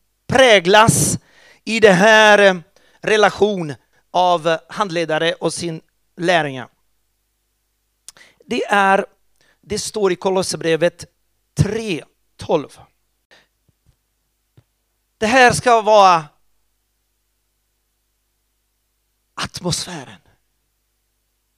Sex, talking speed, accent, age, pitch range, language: male, 60 wpm, native, 40-59, 115-180 Hz, Swedish